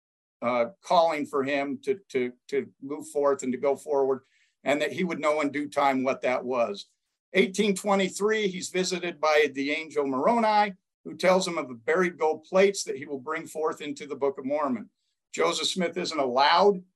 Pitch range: 145-195 Hz